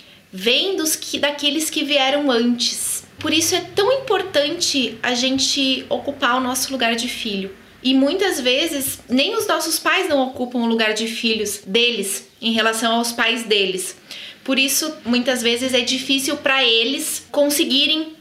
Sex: female